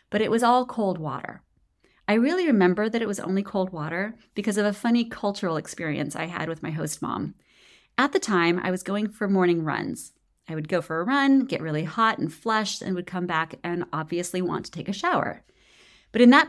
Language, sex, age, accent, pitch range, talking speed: English, female, 30-49, American, 175-235 Hz, 220 wpm